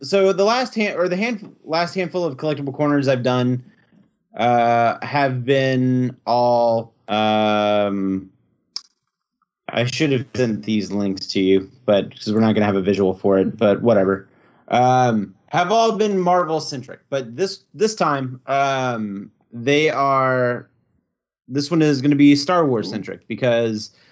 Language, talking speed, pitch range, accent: English, 155 wpm, 115-150 Hz, American